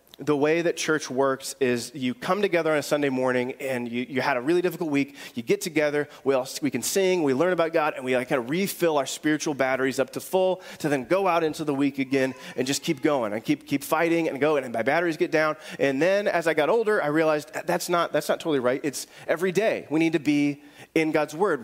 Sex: male